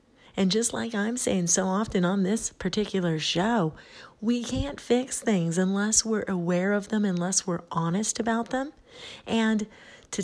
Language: English